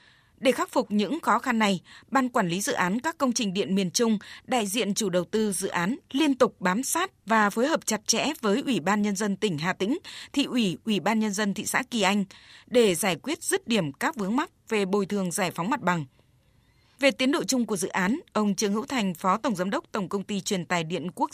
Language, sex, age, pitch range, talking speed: Vietnamese, female, 20-39, 190-245 Hz, 250 wpm